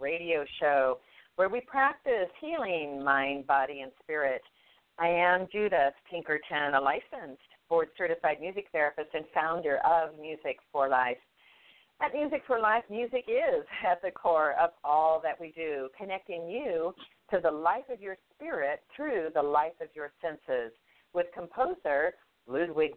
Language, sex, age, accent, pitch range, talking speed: English, female, 50-69, American, 145-215 Hz, 150 wpm